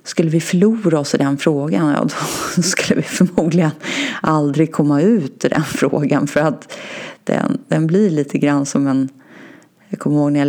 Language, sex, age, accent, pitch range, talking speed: Swedish, female, 30-49, native, 145-185 Hz, 175 wpm